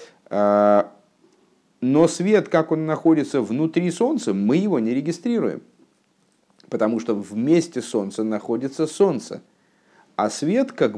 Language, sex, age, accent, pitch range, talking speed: Russian, male, 50-69, native, 105-165 Hz, 110 wpm